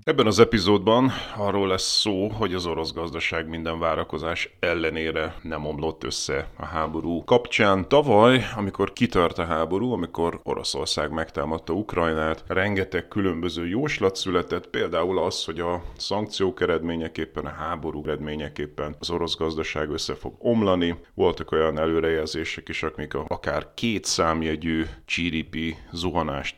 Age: 30-49